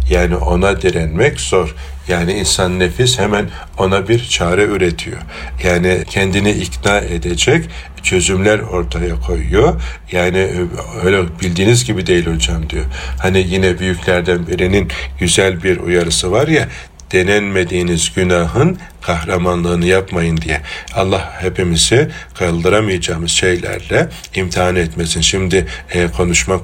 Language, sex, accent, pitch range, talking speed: Turkish, male, native, 85-95 Hz, 110 wpm